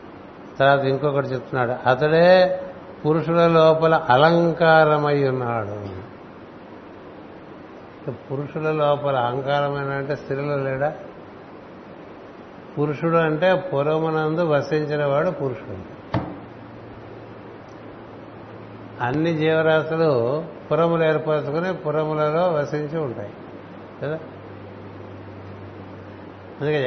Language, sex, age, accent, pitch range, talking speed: Telugu, male, 60-79, native, 135-165 Hz, 65 wpm